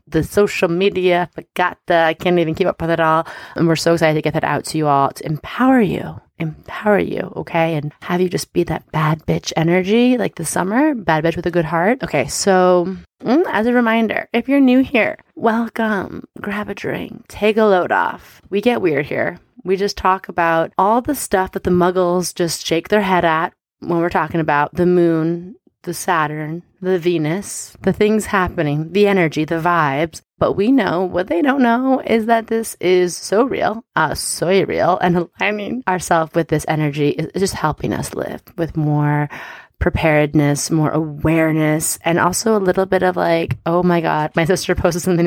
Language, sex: English, female